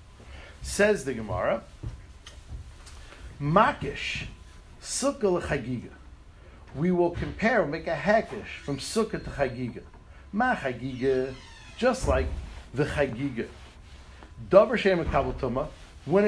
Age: 50-69